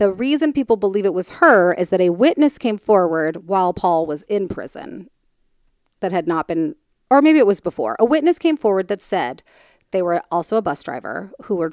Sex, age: female, 30-49